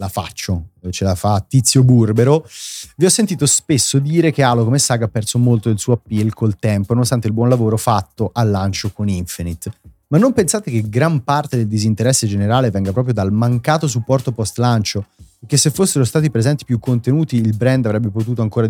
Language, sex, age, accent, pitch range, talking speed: Italian, male, 30-49, native, 100-130 Hz, 195 wpm